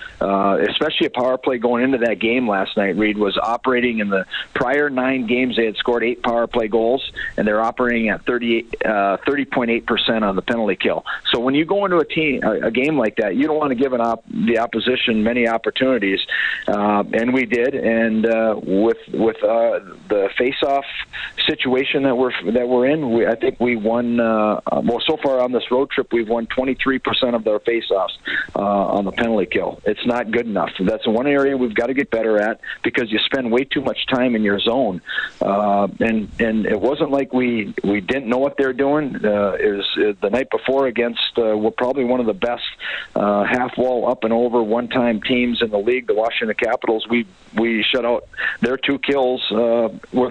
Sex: male